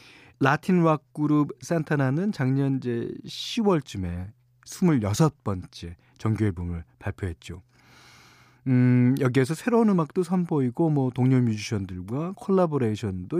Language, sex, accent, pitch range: Korean, male, native, 110-165 Hz